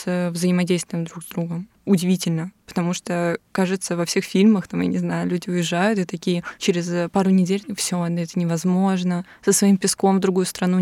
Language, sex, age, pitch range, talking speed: Russian, female, 20-39, 180-200 Hz, 170 wpm